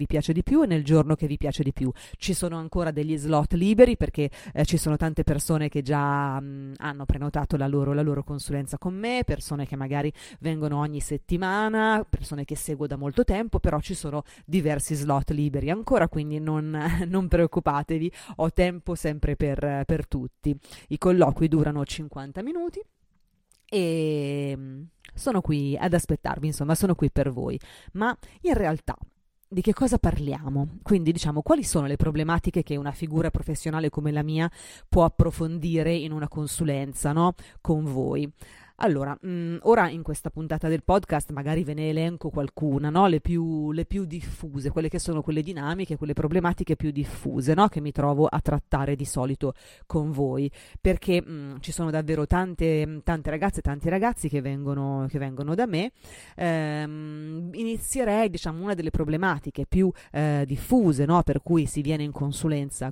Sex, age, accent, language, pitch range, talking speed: female, 30-49, native, Italian, 145-170 Hz, 170 wpm